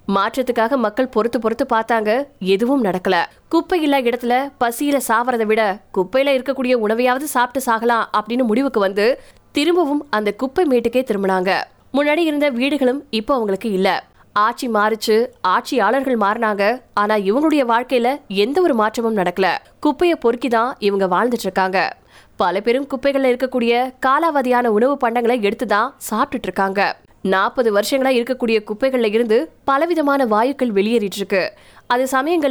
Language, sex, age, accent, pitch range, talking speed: Tamil, female, 20-39, native, 215-270 Hz, 65 wpm